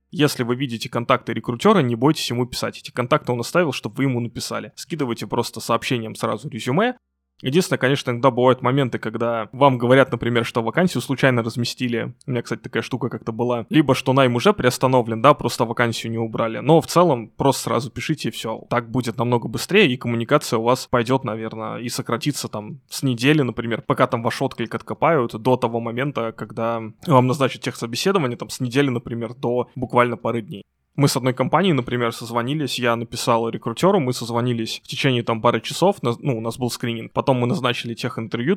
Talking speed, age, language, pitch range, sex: 190 wpm, 20-39, Russian, 115-135 Hz, male